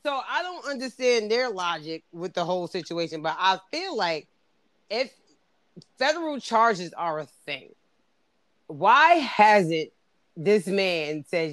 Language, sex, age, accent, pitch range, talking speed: English, female, 30-49, American, 160-200 Hz, 130 wpm